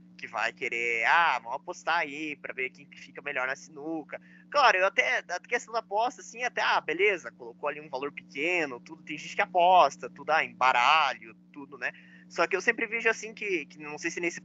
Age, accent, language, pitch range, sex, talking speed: 20-39, Brazilian, Portuguese, 125-175 Hz, male, 220 wpm